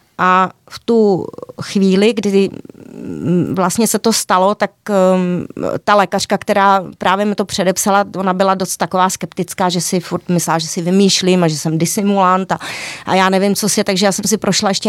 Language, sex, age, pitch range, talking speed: Czech, female, 30-49, 180-215 Hz, 185 wpm